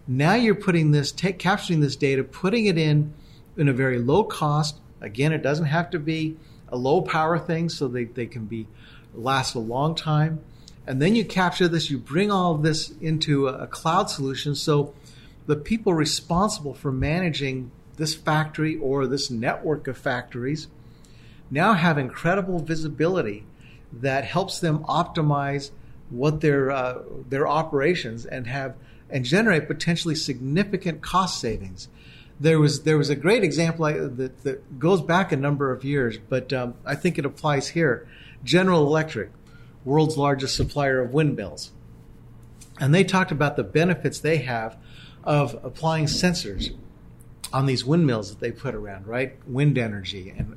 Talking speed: 160 wpm